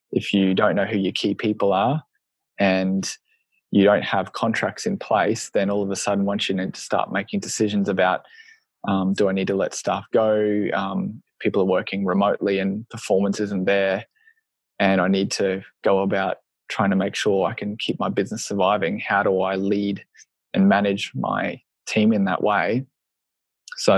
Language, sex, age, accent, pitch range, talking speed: English, male, 20-39, Australian, 95-105 Hz, 185 wpm